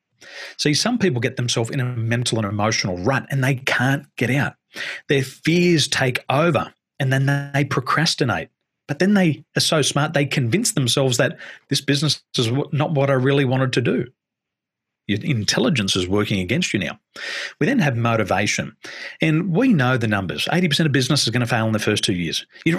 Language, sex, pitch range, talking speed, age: English, male, 115-145 Hz, 190 wpm, 40-59